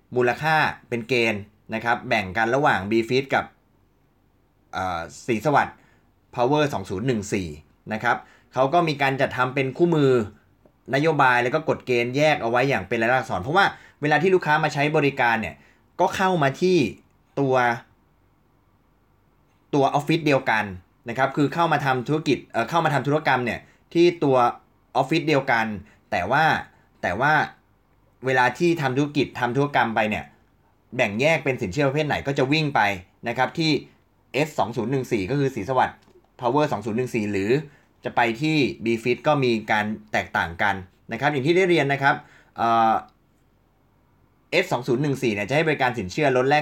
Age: 20-39